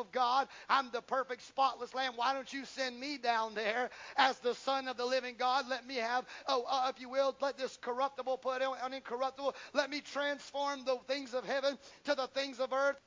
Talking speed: 220 wpm